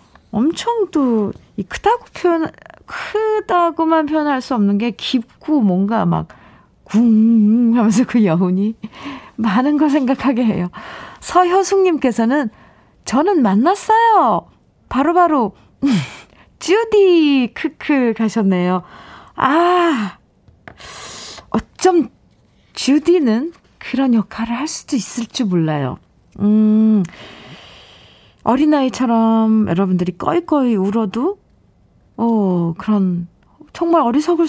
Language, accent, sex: Korean, native, female